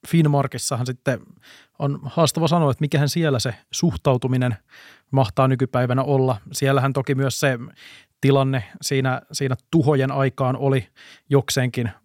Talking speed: 120 wpm